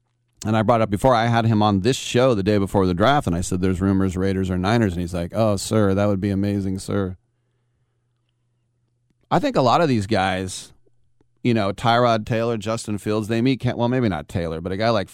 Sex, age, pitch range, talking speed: male, 30-49, 100-120 Hz, 230 wpm